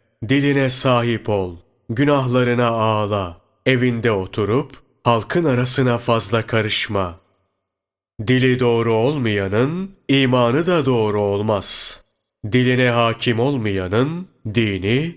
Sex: male